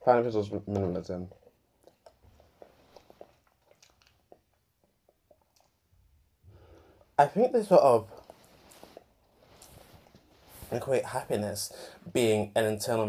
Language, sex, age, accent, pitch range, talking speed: English, male, 20-39, British, 100-130 Hz, 60 wpm